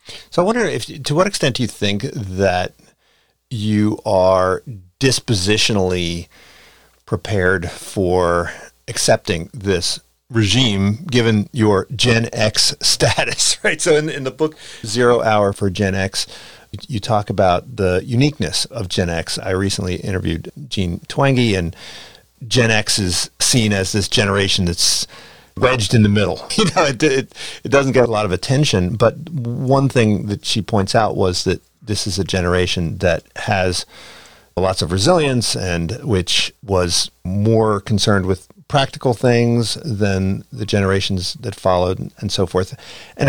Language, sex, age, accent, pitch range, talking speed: English, male, 50-69, American, 95-120 Hz, 150 wpm